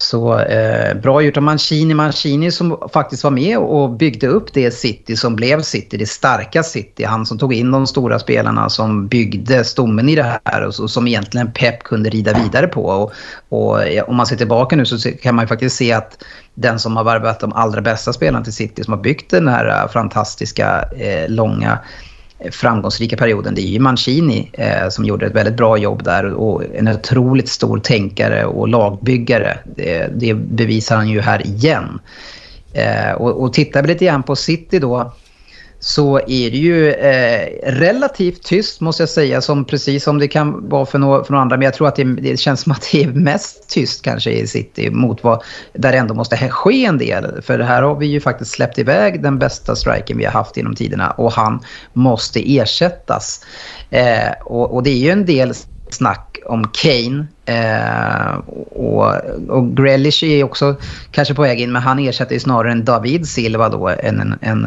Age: 30-49